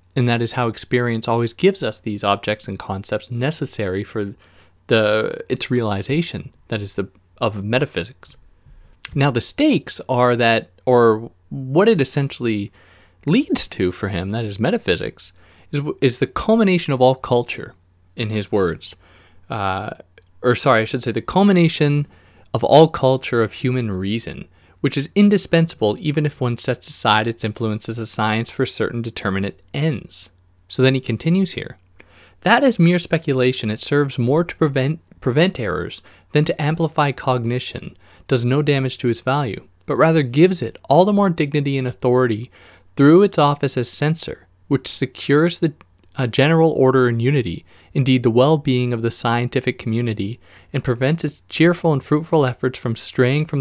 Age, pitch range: 20-39, 105-145 Hz